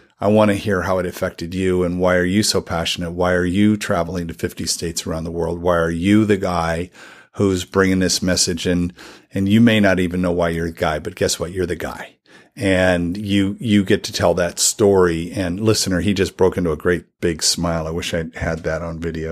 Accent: American